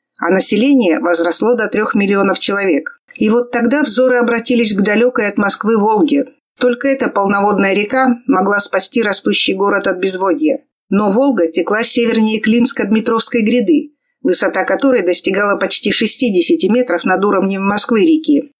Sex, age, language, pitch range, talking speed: female, 50-69, Russian, 205-255 Hz, 140 wpm